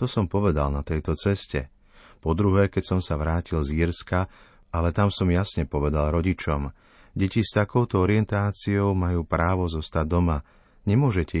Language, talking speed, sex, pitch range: Slovak, 145 wpm, male, 80-95 Hz